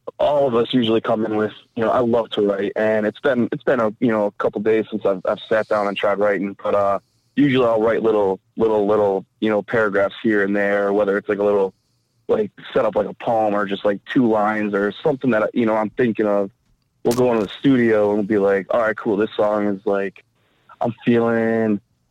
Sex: male